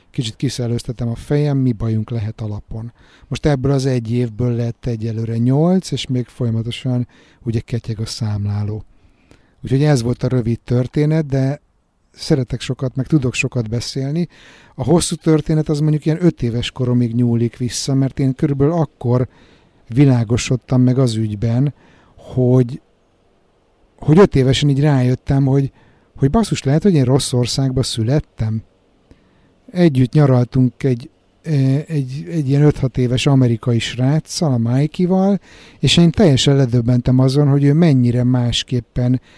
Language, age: Hungarian, 60-79